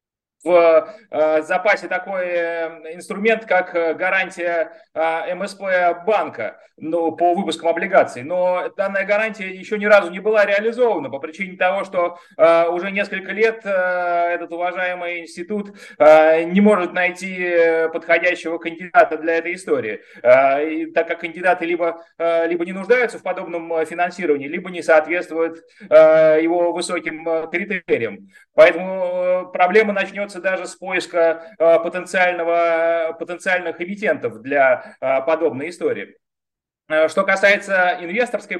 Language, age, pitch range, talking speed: Russian, 30-49, 165-195 Hz, 110 wpm